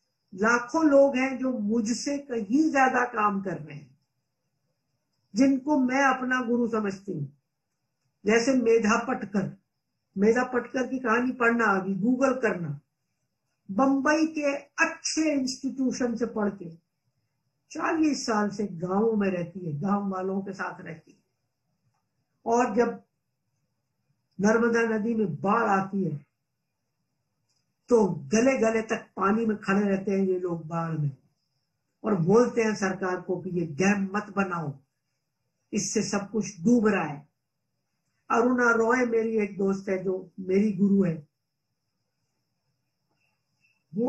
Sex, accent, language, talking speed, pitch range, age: female, native, Hindi, 130 wpm, 155-240 Hz, 50-69